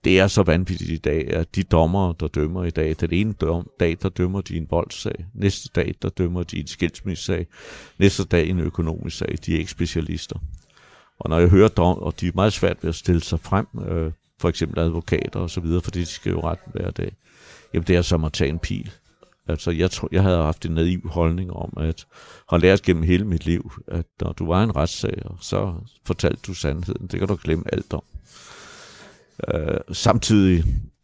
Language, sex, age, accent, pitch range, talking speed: Danish, male, 60-79, native, 80-95 Hz, 210 wpm